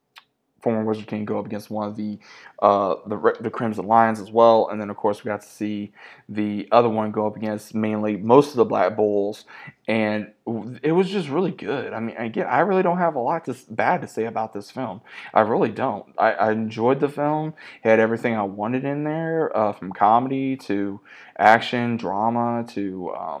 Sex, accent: male, American